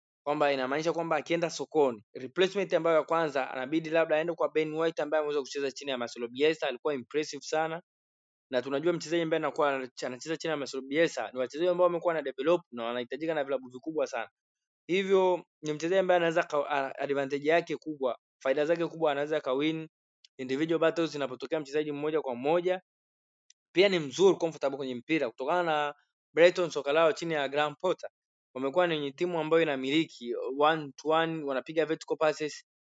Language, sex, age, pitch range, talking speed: Swahili, male, 20-39, 135-165 Hz, 170 wpm